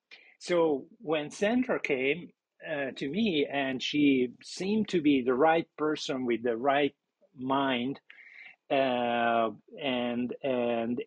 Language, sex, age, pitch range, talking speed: English, male, 50-69, 135-180 Hz, 120 wpm